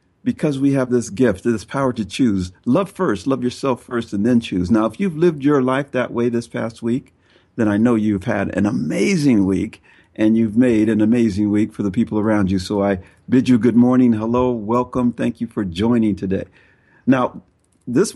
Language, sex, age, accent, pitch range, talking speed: English, male, 50-69, American, 105-145 Hz, 205 wpm